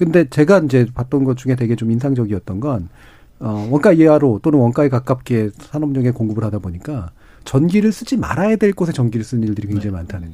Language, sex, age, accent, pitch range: Korean, male, 40-59, native, 115-155 Hz